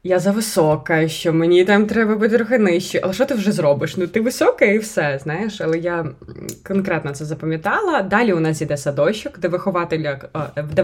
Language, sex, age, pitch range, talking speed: Ukrainian, female, 20-39, 160-220 Hz, 175 wpm